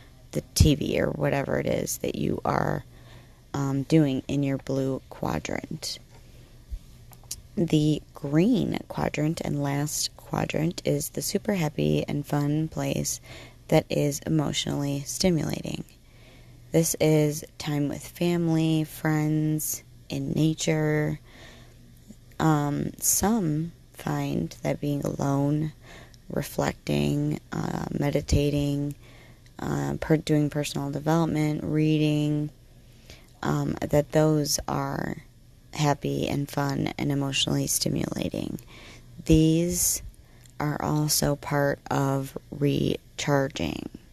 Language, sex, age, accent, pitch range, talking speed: English, female, 30-49, American, 125-155 Hz, 95 wpm